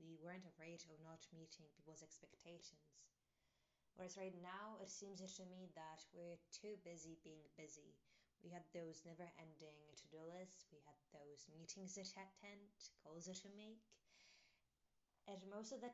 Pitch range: 160-195 Hz